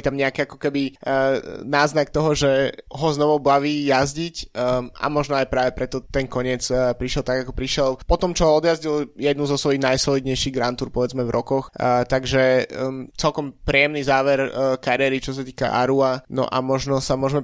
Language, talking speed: Slovak, 190 wpm